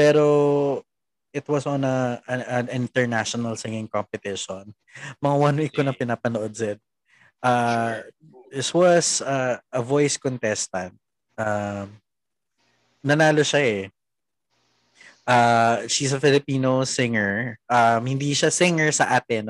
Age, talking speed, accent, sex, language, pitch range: 20-39, 115 wpm, native, male, Filipino, 115-140 Hz